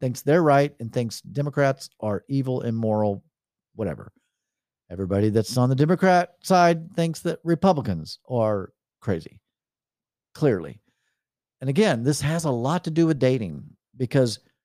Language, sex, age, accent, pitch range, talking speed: English, male, 50-69, American, 110-150 Hz, 135 wpm